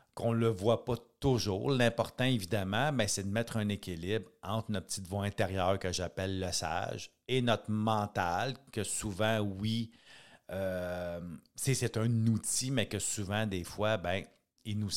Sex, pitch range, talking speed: male, 95-120 Hz, 170 wpm